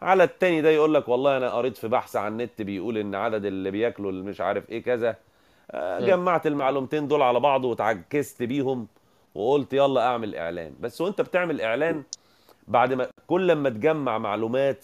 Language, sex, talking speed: Arabic, male, 175 wpm